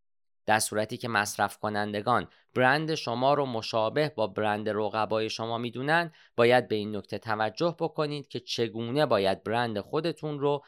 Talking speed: 145 wpm